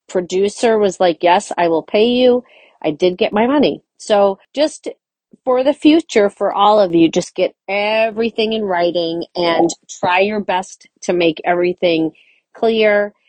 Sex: female